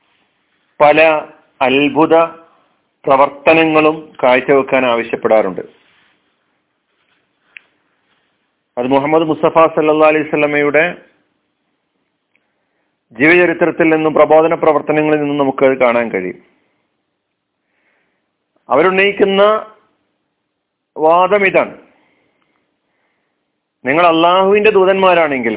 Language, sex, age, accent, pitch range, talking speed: Malayalam, male, 40-59, native, 145-195 Hz, 60 wpm